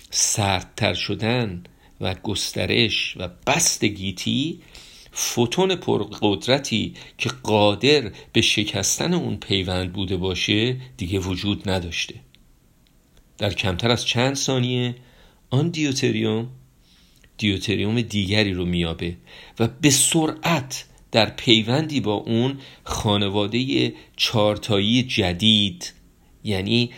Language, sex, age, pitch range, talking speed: Persian, male, 50-69, 100-130 Hz, 95 wpm